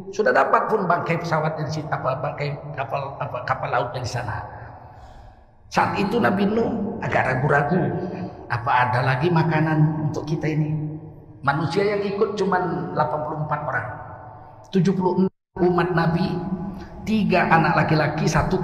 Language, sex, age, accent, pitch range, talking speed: Indonesian, male, 50-69, native, 130-180 Hz, 130 wpm